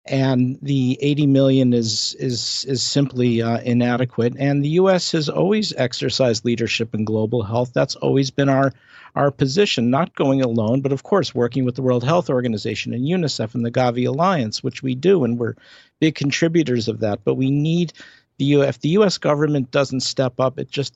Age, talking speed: 50-69, 190 wpm